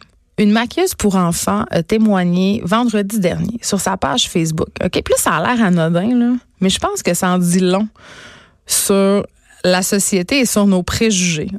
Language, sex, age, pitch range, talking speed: French, female, 30-49, 175-220 Hz, 175 wpm